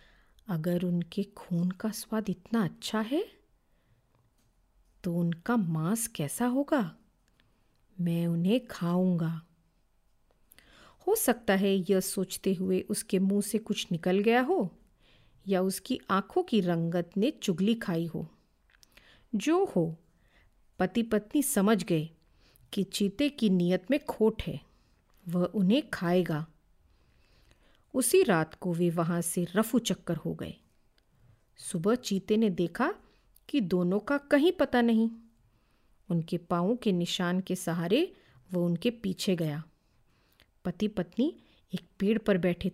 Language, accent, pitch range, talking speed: Hindi, native, 170-220 Hz, 125 wpm